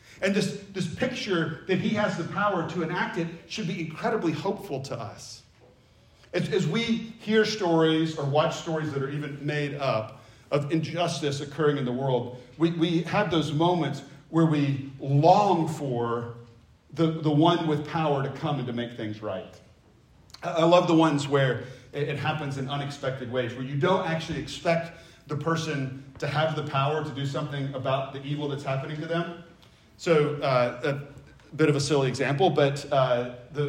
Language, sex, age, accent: English, male, 40-59, American